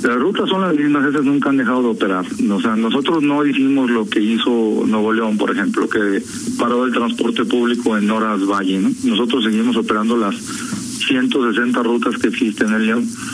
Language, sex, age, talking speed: Spanish, male, 50-69, 195 wpm